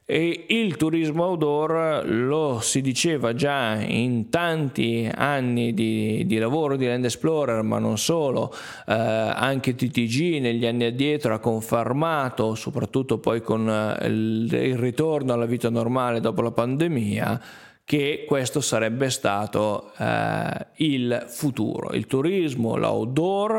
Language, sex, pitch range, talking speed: Italian, male, 115-155 Hz, 125 wpm